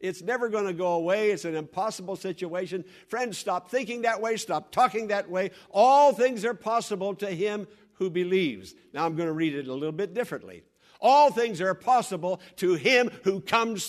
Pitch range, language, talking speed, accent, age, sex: 155-220 Hz, English, 195 wpm, American, 60-79, male